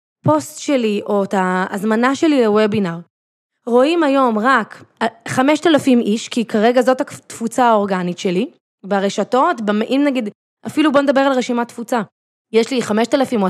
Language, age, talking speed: Hebrew, 20-39, 140 wpm